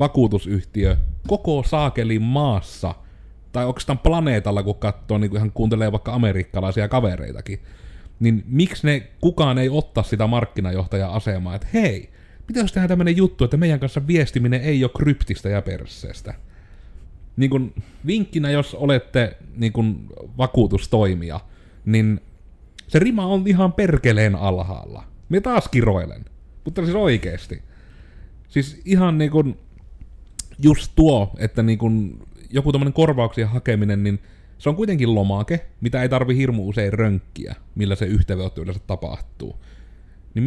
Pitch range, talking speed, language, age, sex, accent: 100-135 Hz, 135 wpm, Finnish, 30-49, male, native